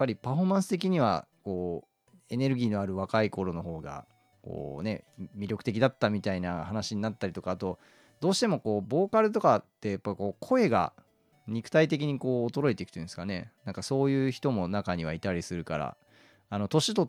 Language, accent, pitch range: Japanese, native, 95-135 Hz